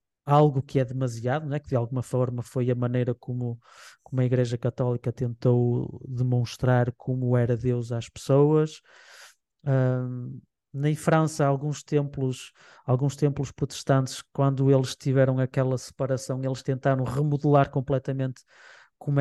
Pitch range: 125-145 Hz